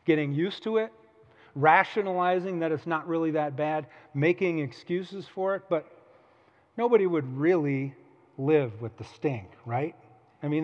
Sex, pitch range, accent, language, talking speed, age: male, 120-170 Hz, American, English, 145 wpm, 40-59